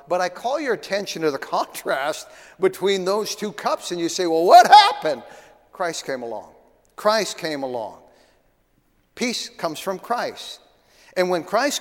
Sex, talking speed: male, 160 wpm